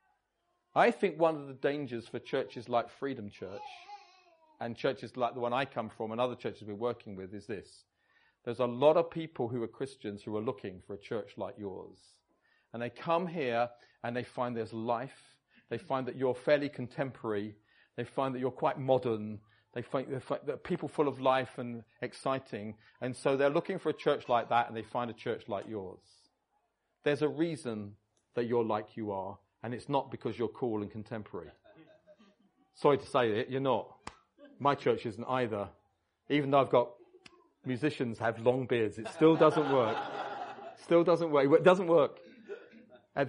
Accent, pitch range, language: British, 115-150 Hz, English